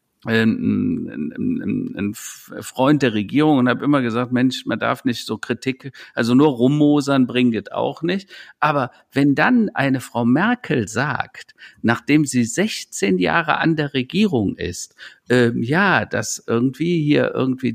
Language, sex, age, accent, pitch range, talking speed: German, male, 50-69, German, 125-165 Hz, 140 wpm